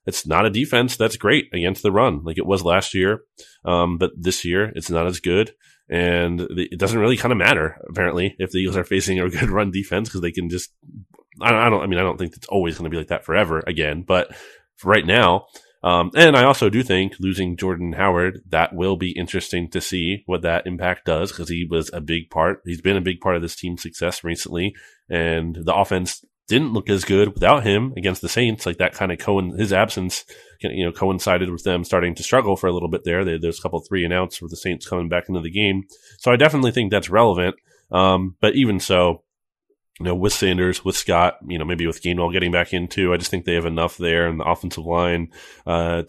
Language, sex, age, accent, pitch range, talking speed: English, male, 30-49, American, 85-95 Hz, 240 wpm